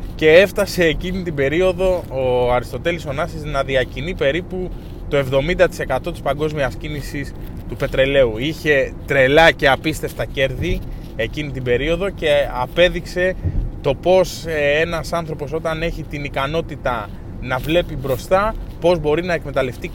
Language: Greek